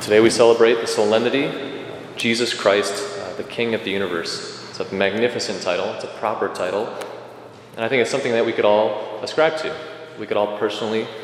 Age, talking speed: 30-49, 190 wpm